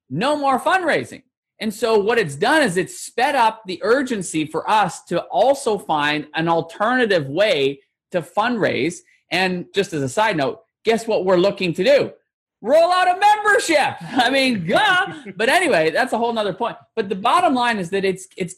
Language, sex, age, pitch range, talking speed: English, male, 30-49, 155-235 Hz, 185 wpm